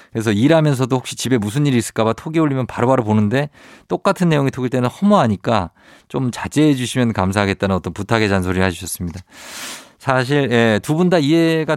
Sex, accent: male, native